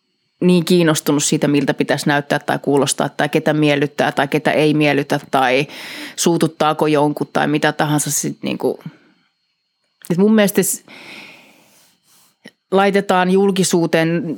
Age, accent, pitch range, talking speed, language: 30-49, Finnish, 145-170 Hz, 110 wpm, English